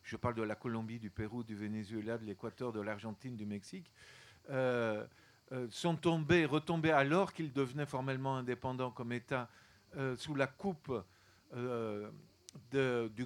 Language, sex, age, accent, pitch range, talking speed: French, male, 50-69, French, 120-155 Hz, 150 wpm